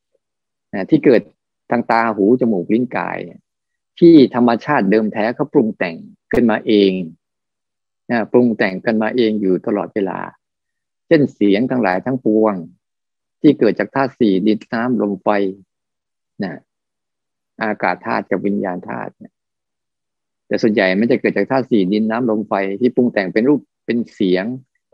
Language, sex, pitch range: Thai, male, 100-125 Hz